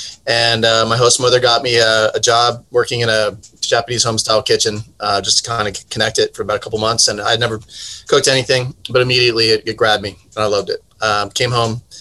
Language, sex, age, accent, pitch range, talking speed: English, male, 30-49, American, 110-120 Hz, 230 wpm